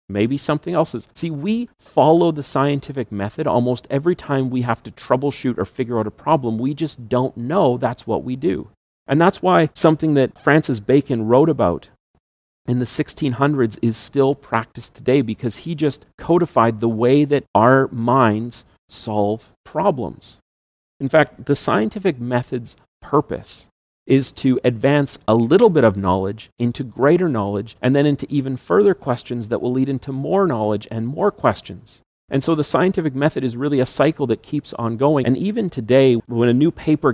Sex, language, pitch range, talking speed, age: male, English, 115-145 Hz, 175 wpm, 40-59